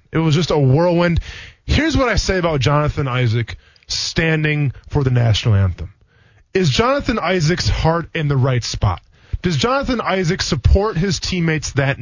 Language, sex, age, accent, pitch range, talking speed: English, male, 20-39, American, 125-180 Hz, 160 wpm